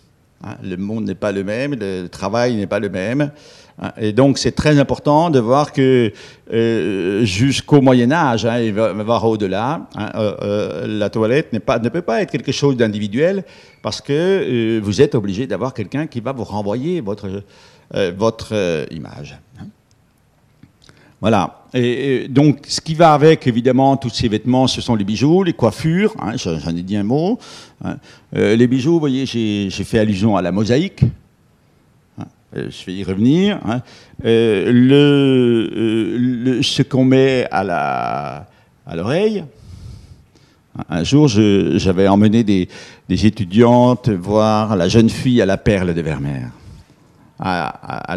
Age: 50-69